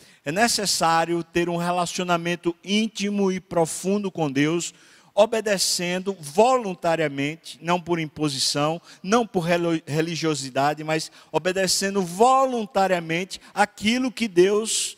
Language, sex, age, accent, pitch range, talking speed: Portuguese, male, 50-69, Brazilian, 150-190 Hz, 95 wpm